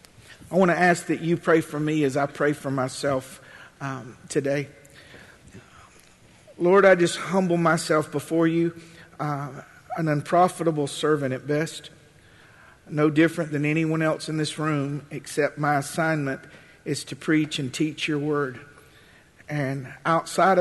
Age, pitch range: 50-69, 140-160 Hz